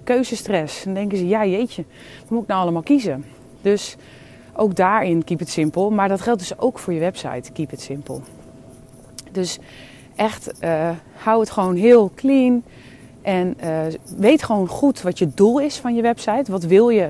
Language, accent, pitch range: English, Dutch, 165-205 Hz